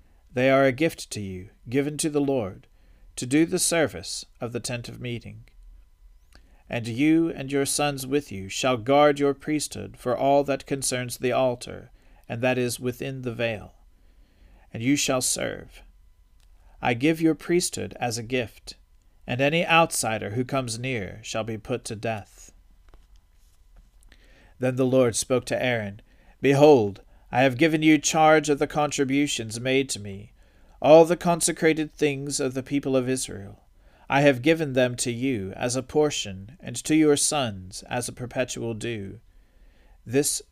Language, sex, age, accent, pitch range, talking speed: English, male, 40-59, American, 100-140 Hz, 160 wpm